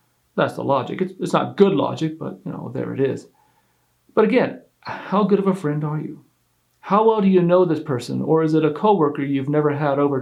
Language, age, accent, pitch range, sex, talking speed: English, 40-59, American, 125-180 Hz, male, 230 wpm